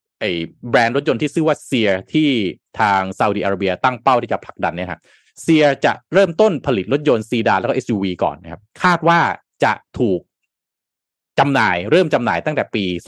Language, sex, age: Thai, male, 20-39